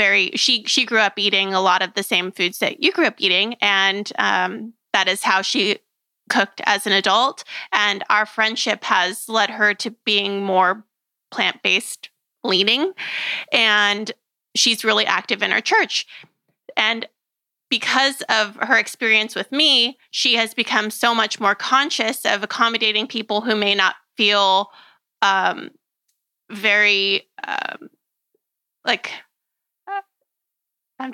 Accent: American